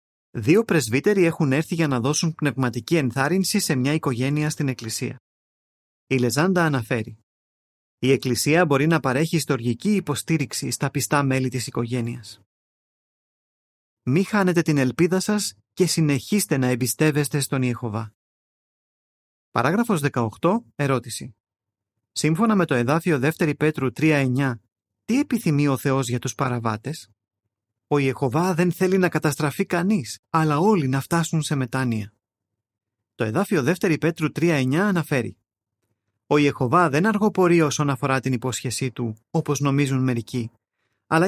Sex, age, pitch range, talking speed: male, 30-49, 120-165 Hz, 130 wpm